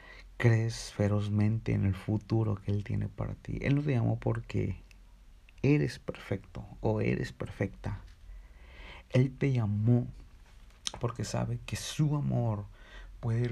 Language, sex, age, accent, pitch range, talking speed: Spanish, male, 50-69, Mexican, 100-125 Hz, 130 wpm